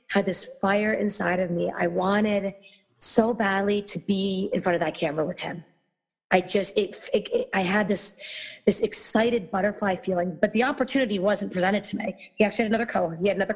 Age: 30-49